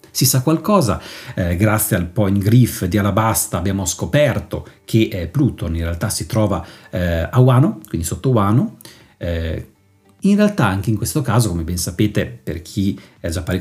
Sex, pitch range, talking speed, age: male, 95-125 Hz, 175 wpm, 40-59